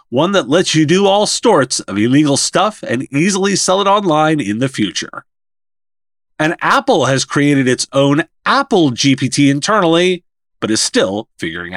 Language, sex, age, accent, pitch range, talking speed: English, male, 30-49, American, 120-190 Hz, 160 wpm